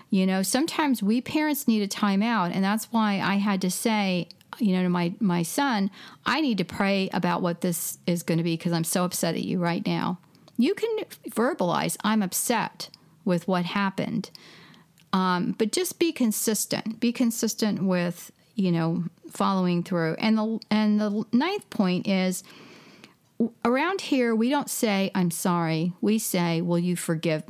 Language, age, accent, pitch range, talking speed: English, 40-59, American, 180-225 Hz, 180 wpm